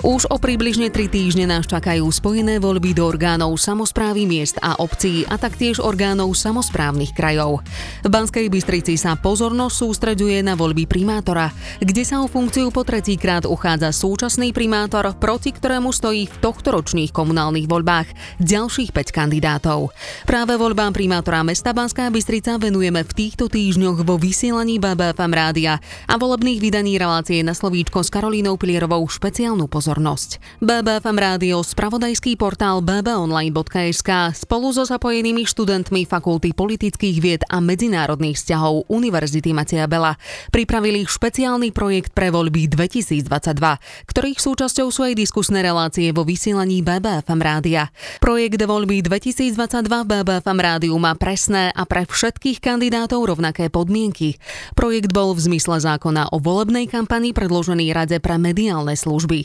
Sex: female